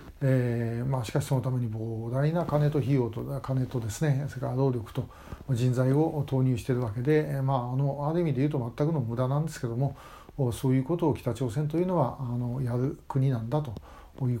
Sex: male